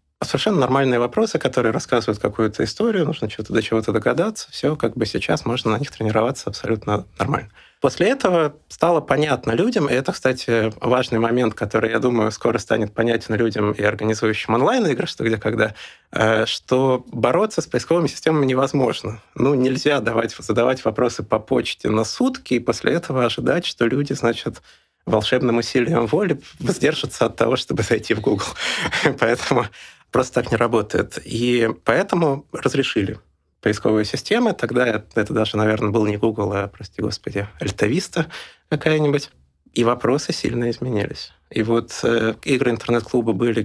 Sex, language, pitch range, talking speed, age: male, Russian, 110-130 Hz, 155 wpm, 30-49